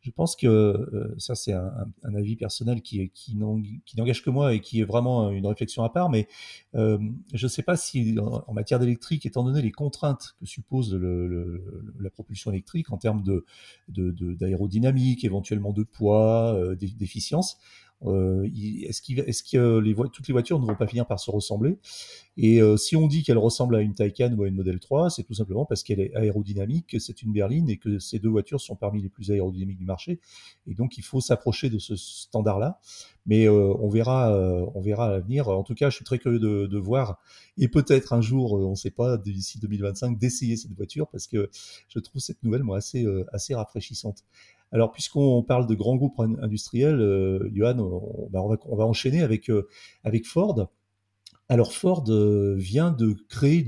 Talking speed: 195 wpm